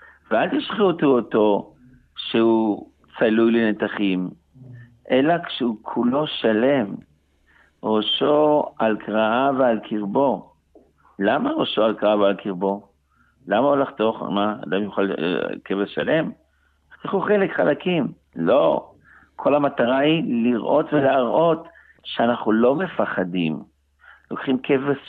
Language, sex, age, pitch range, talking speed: Hebrew, male, 60-79, 95-135 Hz, 105 wpm